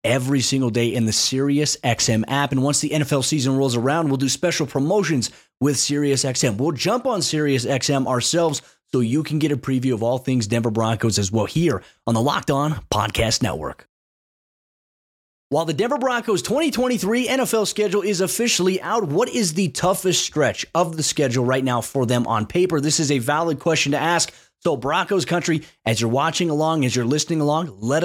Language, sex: English, male